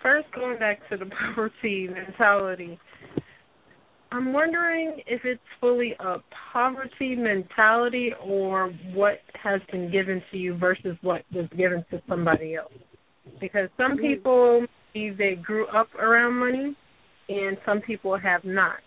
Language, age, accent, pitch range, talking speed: English, 30-49, American, 185-220 Hz, 135 wpm